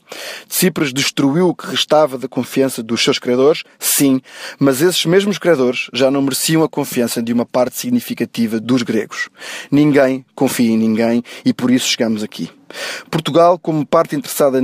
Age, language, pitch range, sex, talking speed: 20-39, Portuguese, 125-150 Hz, male, 160 wpm